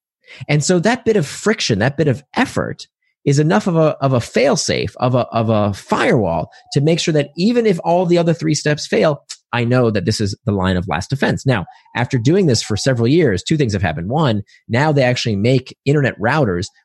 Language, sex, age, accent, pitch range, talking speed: English, male, 30-49, American, 110-155 Hz, 225 wpm